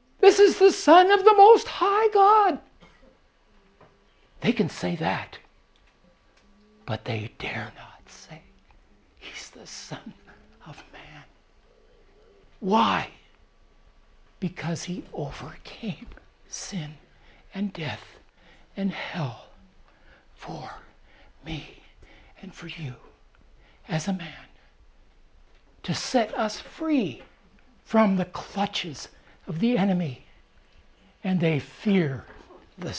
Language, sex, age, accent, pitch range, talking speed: English, male, 60-79, American, 155-230 Hz, 95 wpm